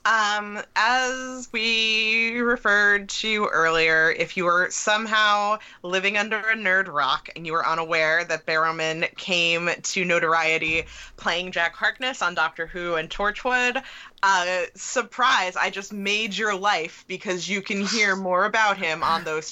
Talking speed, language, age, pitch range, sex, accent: 150 wpm, English, 20-39, 170-225 Hz, female, American